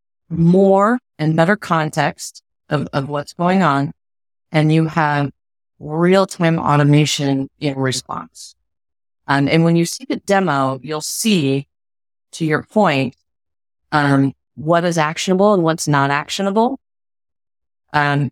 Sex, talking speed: female, 120 wpm